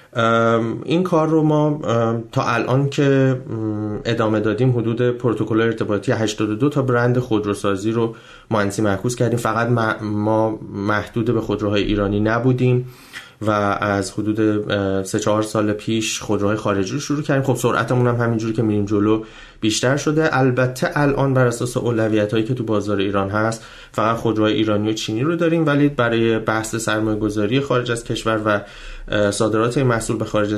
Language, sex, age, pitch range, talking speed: Persian, male, 30-49, 105-125 Hz, 155 wpm